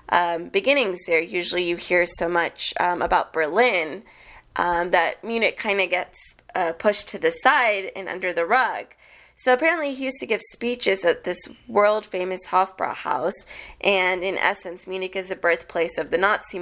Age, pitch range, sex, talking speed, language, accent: 20-39, 175-205 Hz, female, 170 wpm, English, American